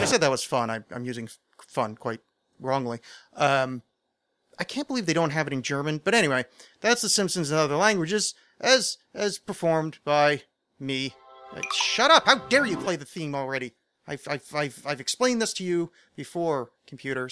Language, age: English, 30-49